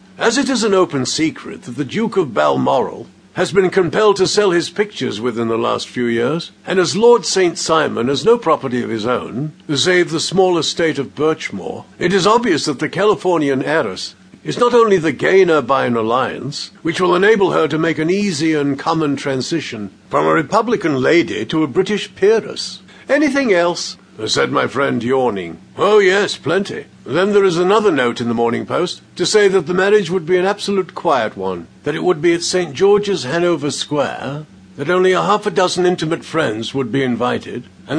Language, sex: English, male